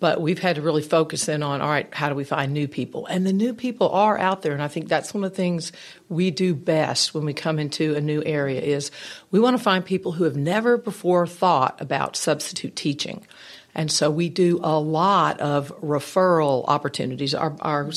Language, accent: English, American